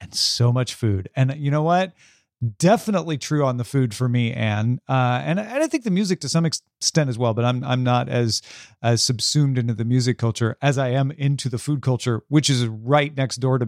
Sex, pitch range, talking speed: male, 120-160 Hz, 235 wpm